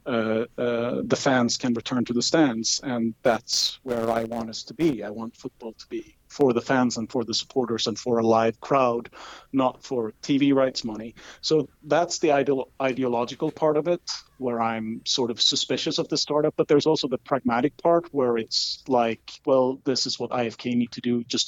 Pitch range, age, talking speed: 120-145 Hz, 40-59, 200 wpm